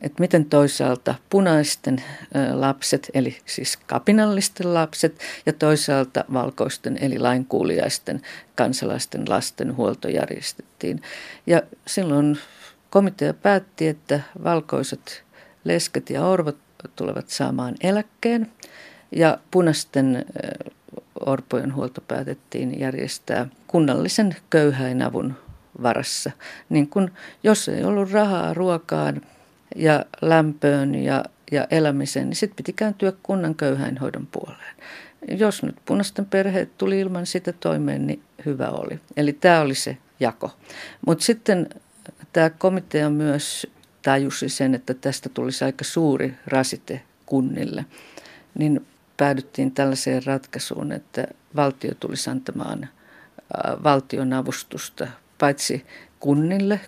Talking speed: 110 wpm